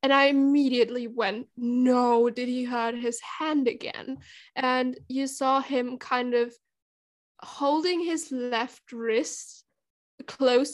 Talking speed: 125 wpm